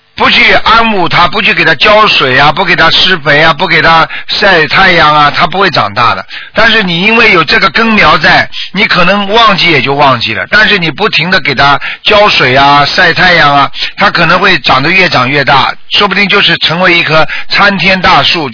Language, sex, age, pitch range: Chinese, male, 50-69, 160-215 Hz